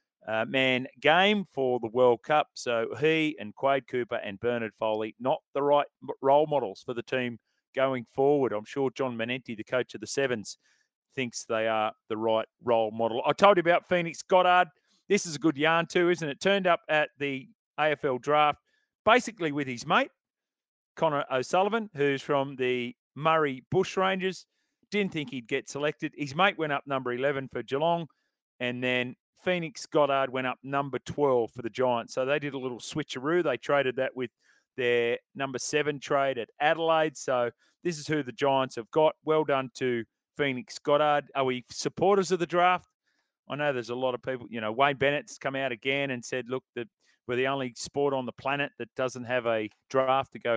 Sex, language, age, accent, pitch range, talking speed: male, English, 40-59, Australian, 125-155 Hz, 195 wpm